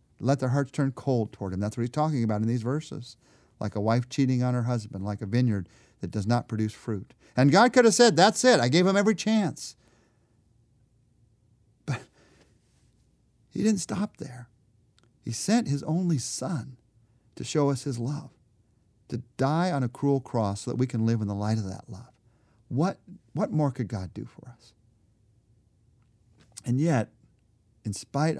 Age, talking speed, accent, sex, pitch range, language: 50-69, 180 wpm, American, male, 110-145 Hz, English